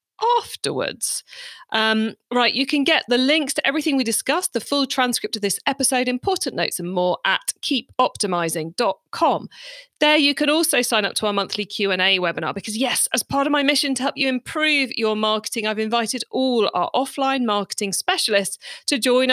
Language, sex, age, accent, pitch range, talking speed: English, female, 40-59, British, 200-270 Hz, 185 wpm